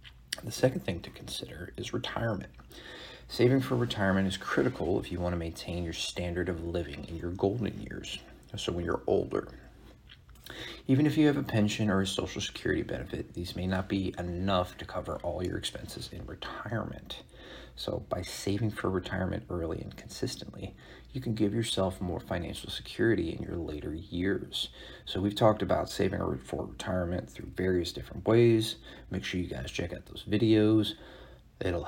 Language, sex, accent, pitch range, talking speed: English, male, American, 90-105 Hz, 170 wpm